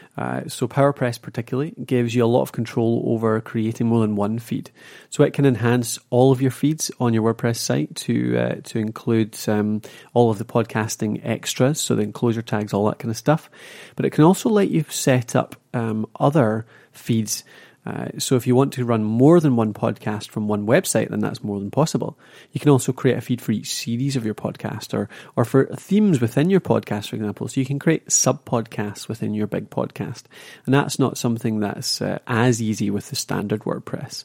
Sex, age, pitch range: male, 30-49, 110-135 Hz